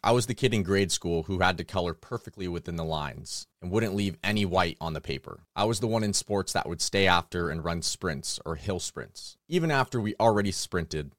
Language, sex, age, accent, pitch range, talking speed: English, male, 30-49, American, 85-105 Hz, 235 wpm